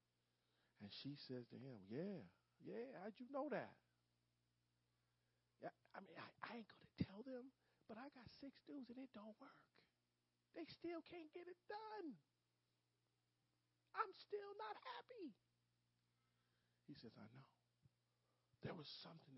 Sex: male